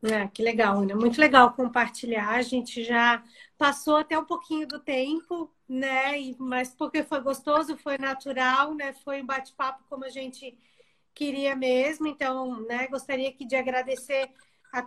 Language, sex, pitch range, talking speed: Portuguese, female, 260-295 Hz, 160 wpm